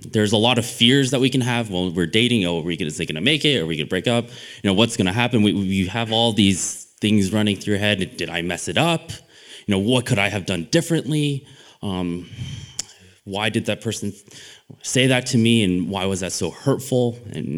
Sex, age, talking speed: male, 20-39, 250 wpm